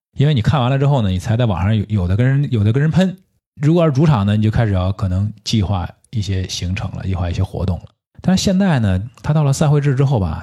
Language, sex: Chinese, male